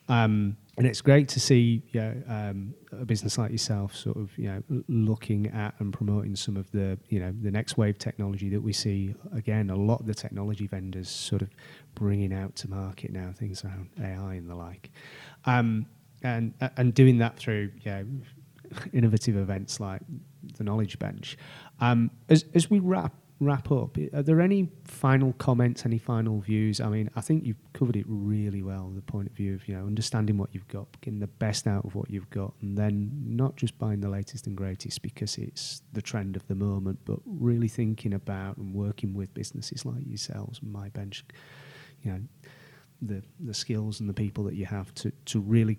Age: 30-49